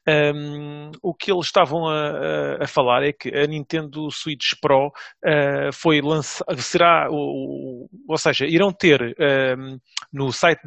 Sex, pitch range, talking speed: male, 140-165 Hz, 150 wpm